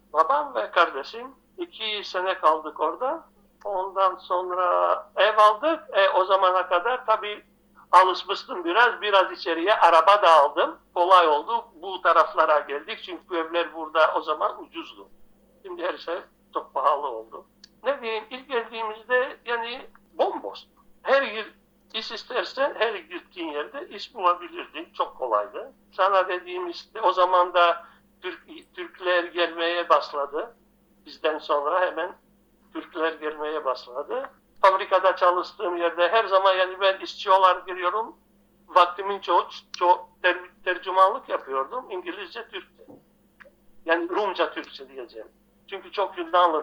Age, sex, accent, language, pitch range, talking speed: 60-79, male, native, Turkish, 170-215 Hz, 125 wpm